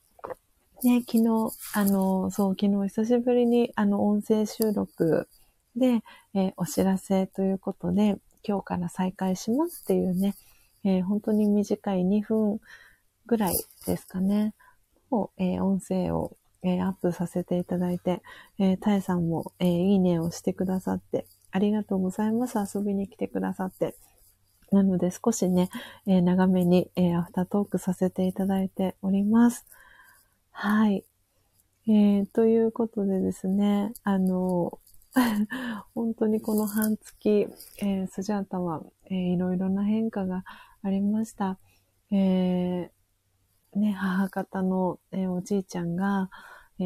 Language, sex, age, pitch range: Japanese, female, 40-59, 180-210 Hz